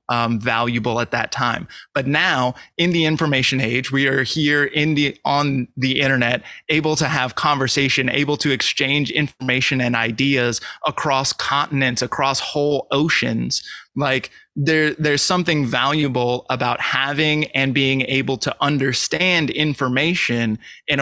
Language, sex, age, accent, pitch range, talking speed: English, male, 20-39, American, 120-145 Hz, 135 wpm